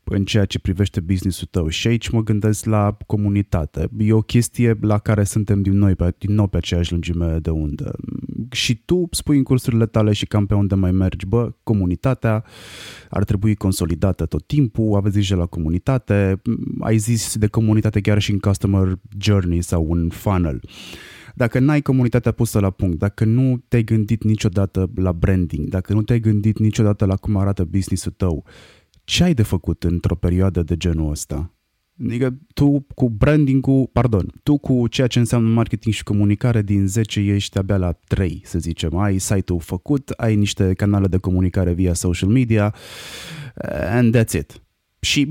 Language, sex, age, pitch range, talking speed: Romanian, male, 20-39, 95-120 Hz, 170 wpm